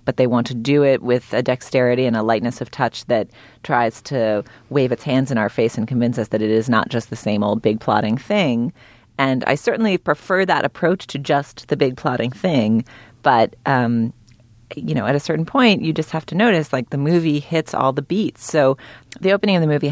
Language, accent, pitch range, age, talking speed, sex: English, American, 115-155 Hz, 30-49, 225 wpm, female